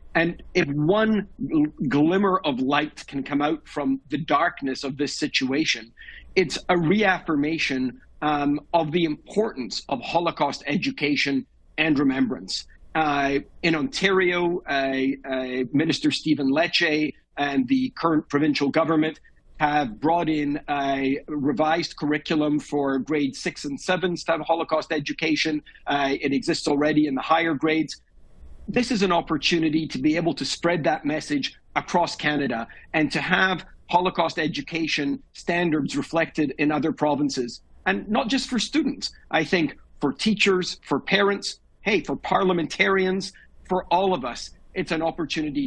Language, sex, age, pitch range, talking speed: English, male, 50-69, 145-175 Hz, 140 wpm